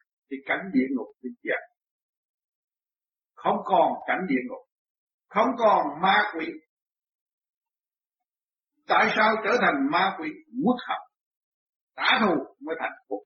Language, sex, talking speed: Vietnamese, male, 125 wpm